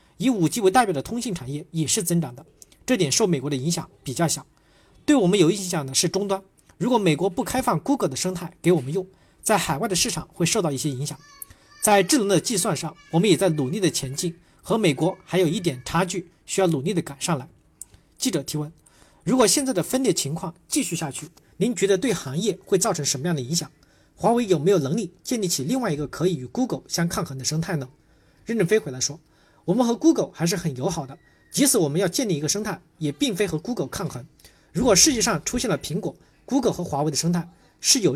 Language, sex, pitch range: Chinese, male, 150-195 Hz